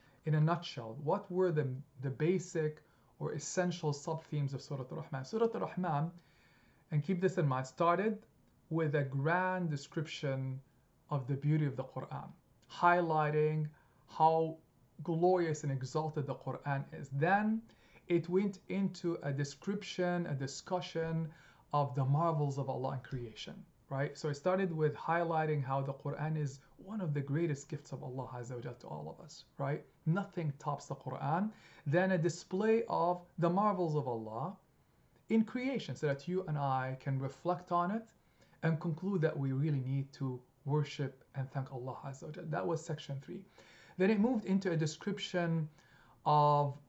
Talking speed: 155 wpm